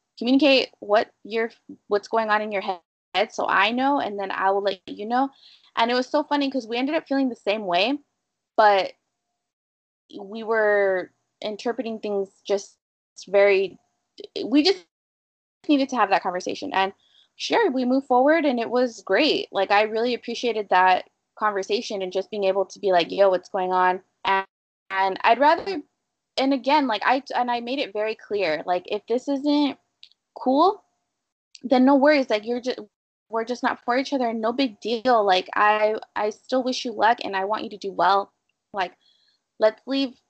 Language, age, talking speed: English, 20-39, 185 wpm